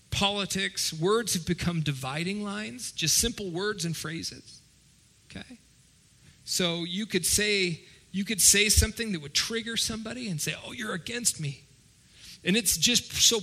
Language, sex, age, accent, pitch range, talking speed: English, male, 40-59, American, 145-200 Hz, 150 wpm